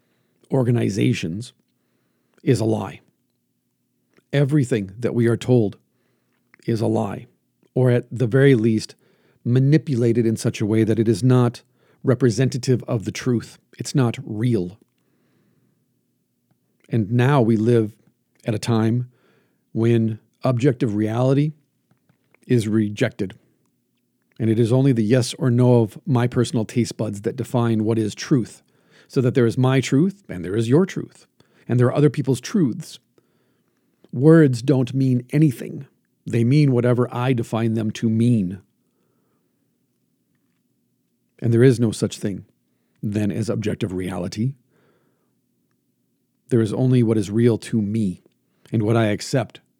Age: 40-59